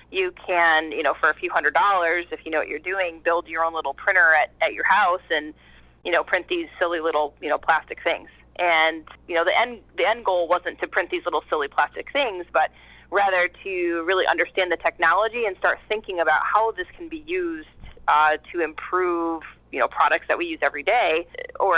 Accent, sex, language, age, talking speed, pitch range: American, female, English, 30-49, 220 wpm, 160-190 Hz